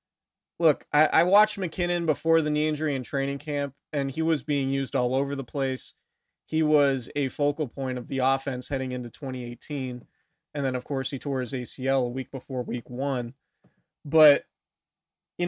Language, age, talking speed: English, 30-49, 180 wpm